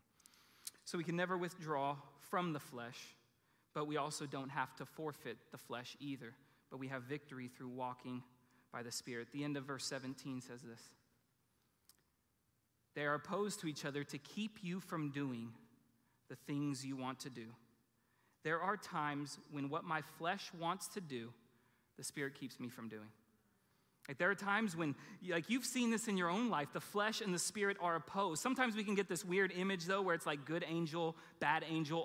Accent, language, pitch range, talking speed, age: American, English, 140-200 Hz, 190 wpm, 30-49